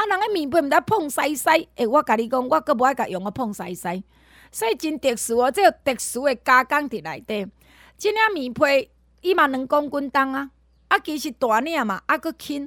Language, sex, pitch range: Chinese, female, 240-335 Hz